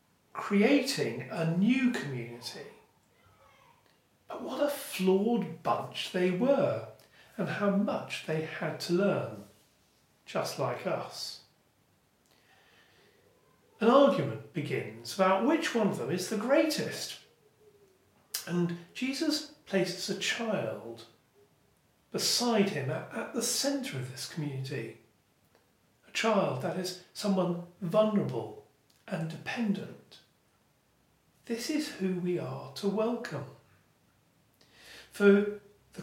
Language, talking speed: English, 105 wpm